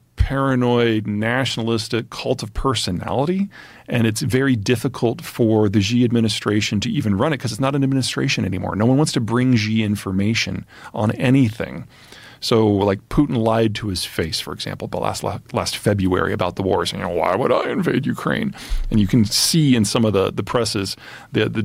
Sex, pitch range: male, 105-135 Hz